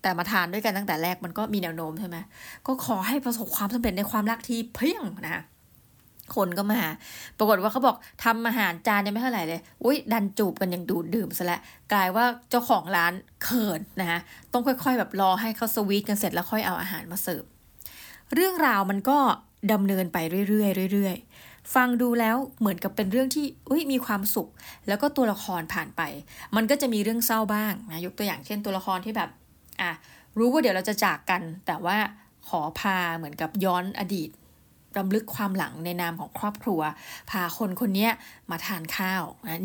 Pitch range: 185-230 Hz